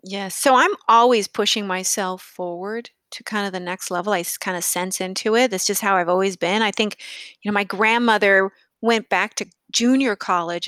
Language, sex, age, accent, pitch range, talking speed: English, female, 40-59, American, 185-245 Hz, 200 wpm